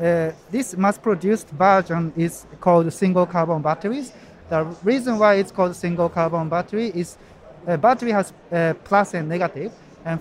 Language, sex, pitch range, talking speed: English, male, 165-205 Hz, 145 wpm